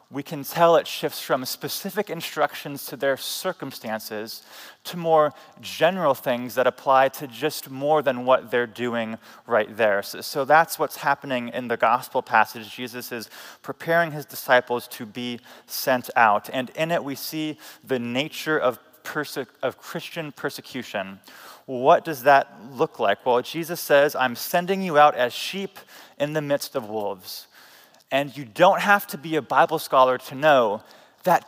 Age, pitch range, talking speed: 30-49, 130-165 Hz, 165 wpm